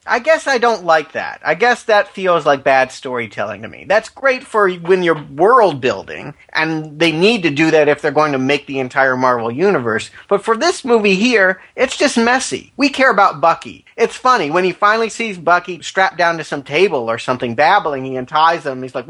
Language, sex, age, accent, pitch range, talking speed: English, male, 40-59, American, 140-195 Hz, 215 wpm